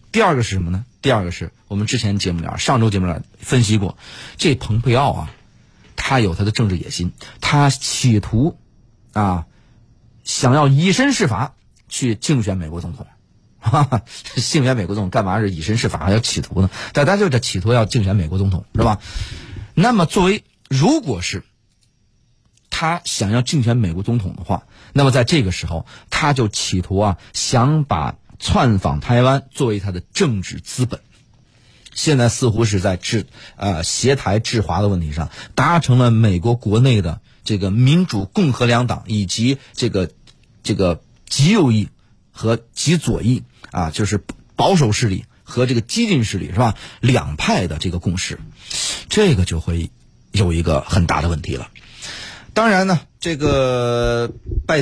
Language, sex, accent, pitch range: Chinese, male, native, 95-130 Hz